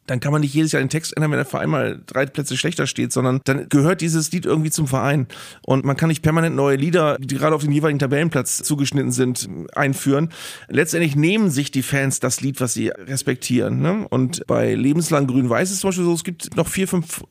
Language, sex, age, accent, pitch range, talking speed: German, male, 30-49, German, 140-180 Hz, 225 wpm